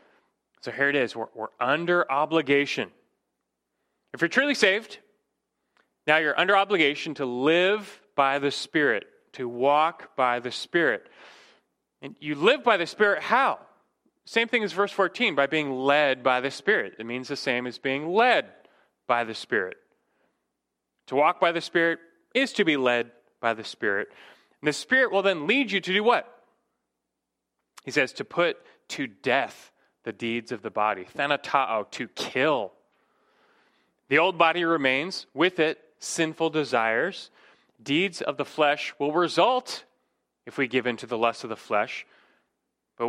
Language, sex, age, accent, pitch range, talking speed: English, male, 30-49, American, 125-185 Hz, 160 wpm